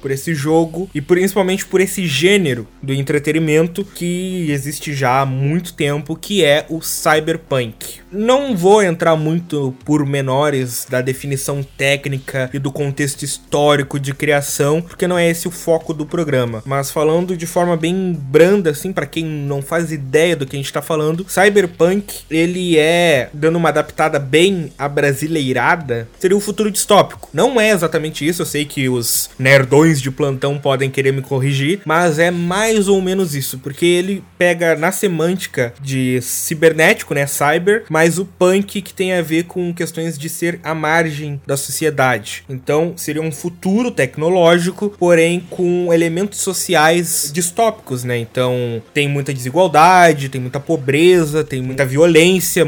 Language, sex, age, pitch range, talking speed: Portuguese, male, 20-39, 140-180 Hz, 160 wpm